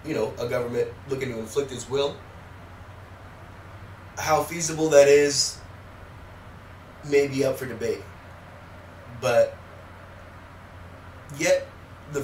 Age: 20-39